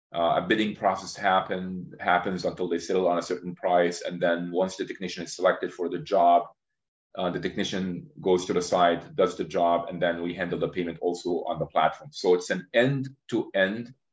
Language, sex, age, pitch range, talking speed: English, male, 30-49, 85-110 Hz, 195 wpm